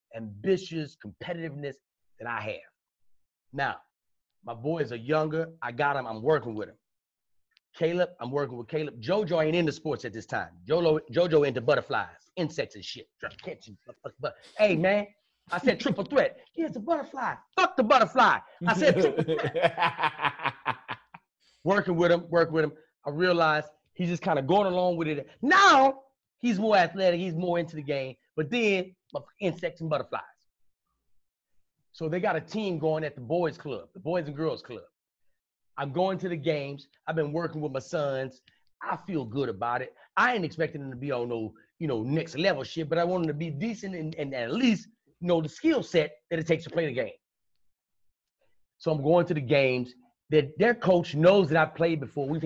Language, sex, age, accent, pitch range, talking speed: English, male, 30-49, American, 145-185 Hz, 190 wpm